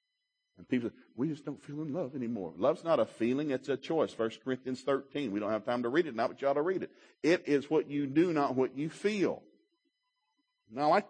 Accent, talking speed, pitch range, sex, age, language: American, 250 wpm, 115-190 Hz, male, 50-69, English